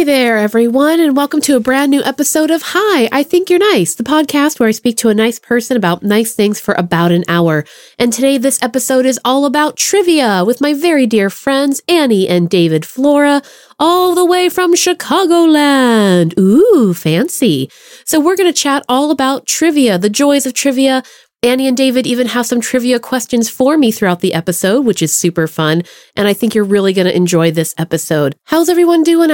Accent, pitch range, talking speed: American, 205-290 Hz, 200 wpm